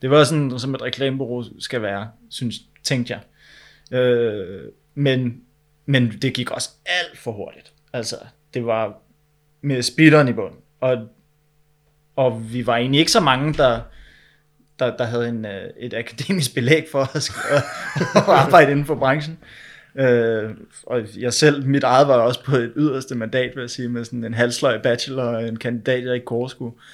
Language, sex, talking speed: Danish, male, 165 wpm